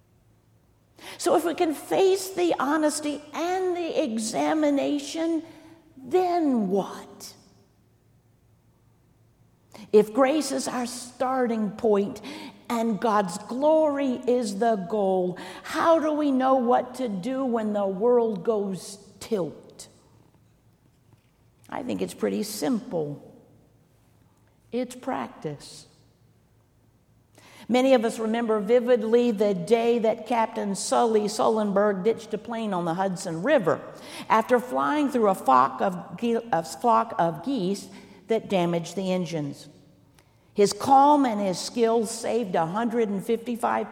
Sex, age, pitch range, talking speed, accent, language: female, 50-69, 170-255 Hz, 115 wpm, American, English